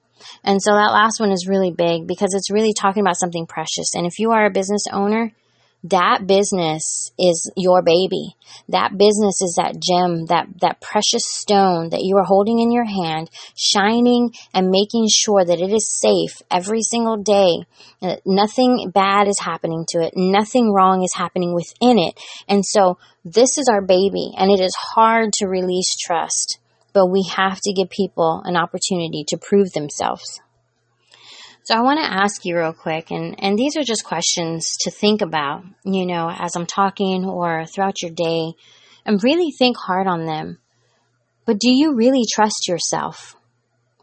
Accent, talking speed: American, 175 wpm